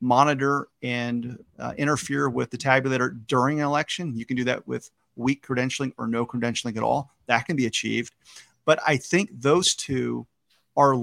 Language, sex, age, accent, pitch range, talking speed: English, male, 40-59, American, 125-150 Hz, 175 wpm